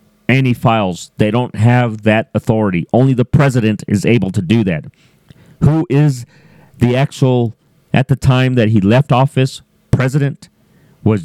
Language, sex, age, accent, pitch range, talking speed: English, male, 40-59, American, 110-140 Hz, 150 wpm